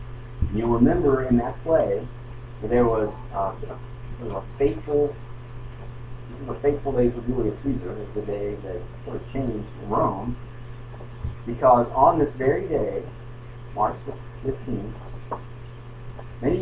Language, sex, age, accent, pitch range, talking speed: English, male, 50-69, American, 115-125 Hz, 125 wpm